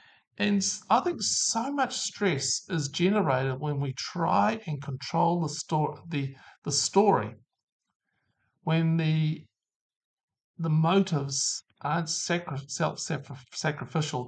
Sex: male